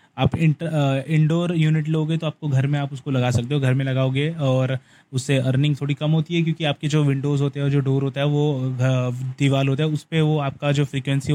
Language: Hindi